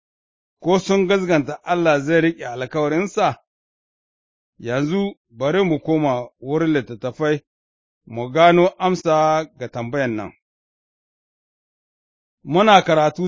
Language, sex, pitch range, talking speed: English, male, 130-170 Hz, 100 wpm